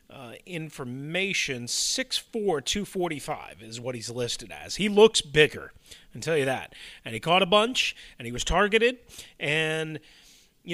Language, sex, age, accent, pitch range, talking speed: English, male, 30-49, American, 130-170 Hz, 150 wpm